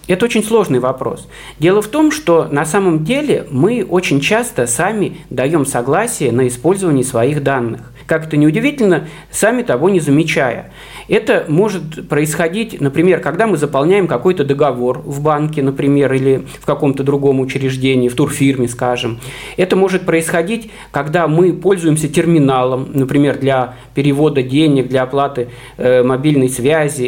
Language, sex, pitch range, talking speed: Russian, male, 130-185 Hz, 145 wpm